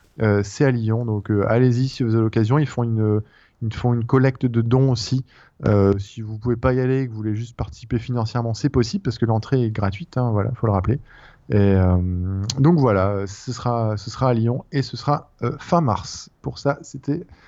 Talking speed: 235 wpm